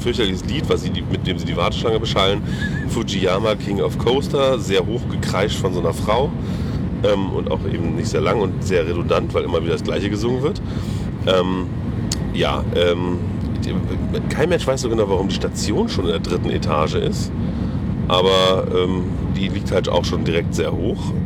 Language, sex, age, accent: German, male, 40-59, German